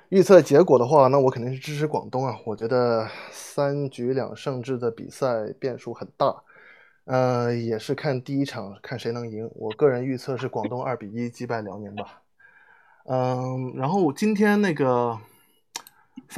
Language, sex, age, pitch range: Chinese, male, 20-39, 120-155 Hz